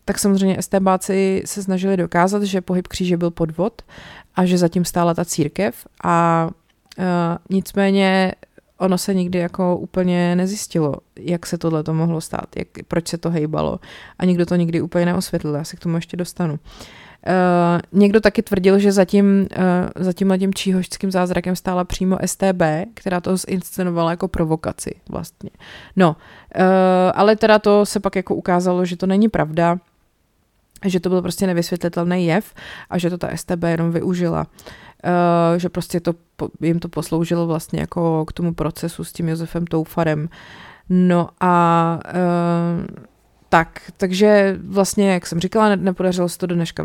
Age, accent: 30-49, native